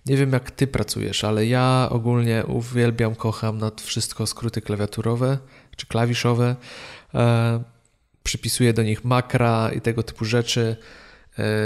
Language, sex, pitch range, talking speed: Polish, male, 115-130 Hz, 135 wpm